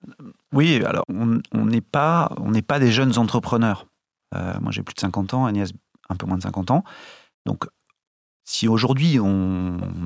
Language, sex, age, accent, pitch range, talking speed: French, male, 40-59, French, 100-130 Hz, 175 wpm